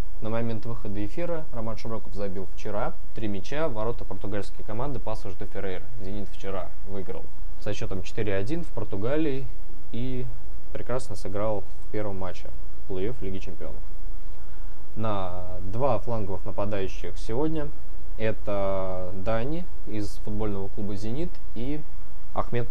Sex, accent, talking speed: male, native, 120 wpm